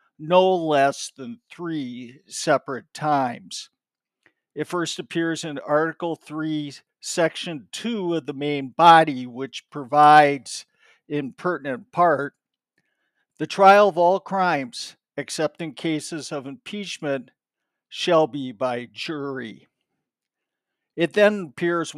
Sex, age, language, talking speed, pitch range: male, 50-69, English, 110 wpm, 145-185 Hz